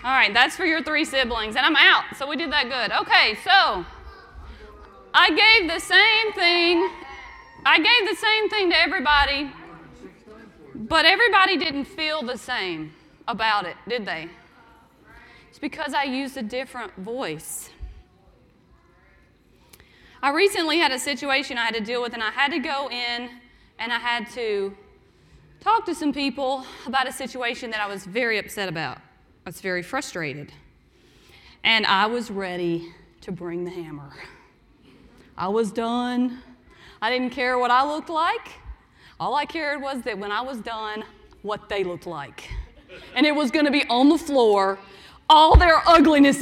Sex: female